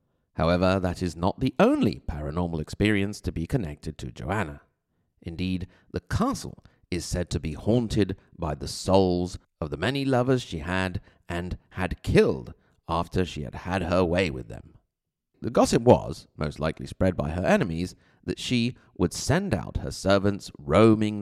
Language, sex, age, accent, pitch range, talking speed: English, male, 30-49, British, 85-115 Hz, 165 wpm